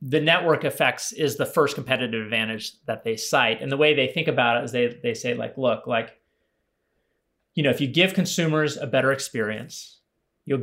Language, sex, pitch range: English, male, 115-145 Hz